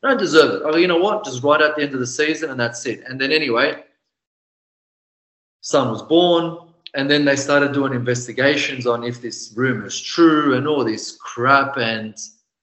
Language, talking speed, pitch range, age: English, 200 wpm, 115-145 Hz, 30-49